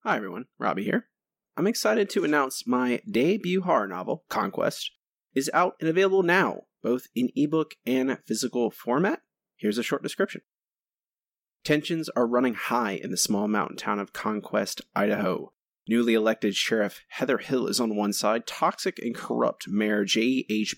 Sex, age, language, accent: male, 20-39, English, American